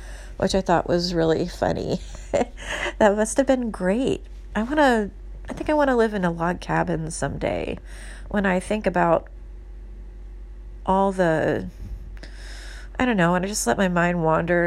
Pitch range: 155-200 Hz